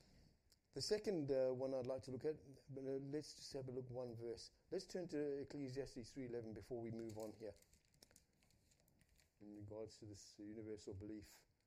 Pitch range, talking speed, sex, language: 100-130 Hz, 165 wpm, male, English